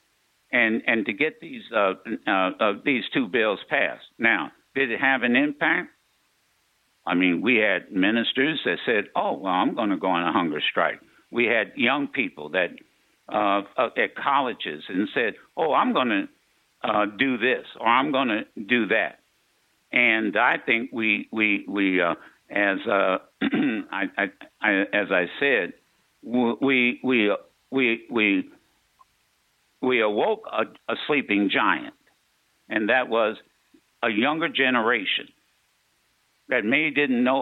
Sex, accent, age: male, American, 60-79